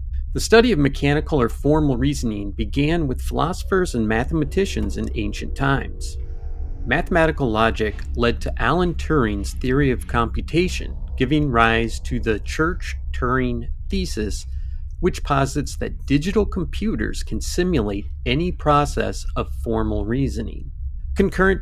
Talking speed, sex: 120 wpm, male